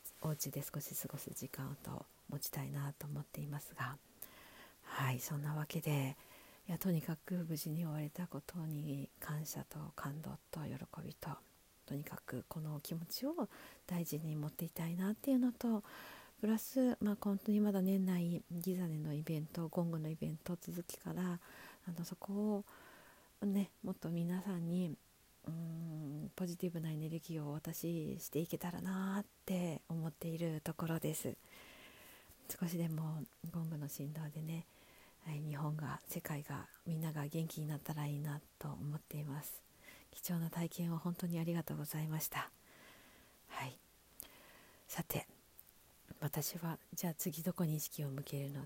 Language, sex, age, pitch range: Japanese, female, 50-69, 150-180 Hz